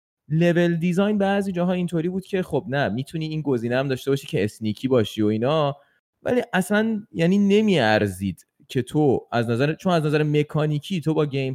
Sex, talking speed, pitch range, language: male, 180 wpm, 110-165 Hz, Persian